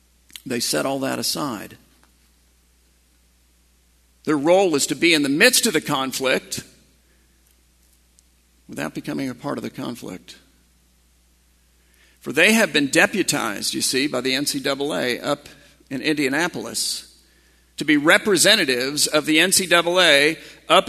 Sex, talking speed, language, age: male, 125 wpm, English, 50-69